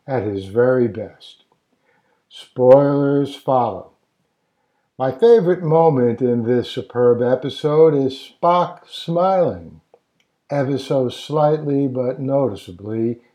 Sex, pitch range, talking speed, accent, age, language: male, 125-155 Hz, 95 wpm, American, 60-79, English